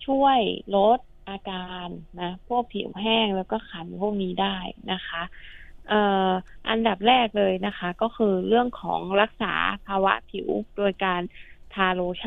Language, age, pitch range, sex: Thai, 20-39, 185-225 Hz, female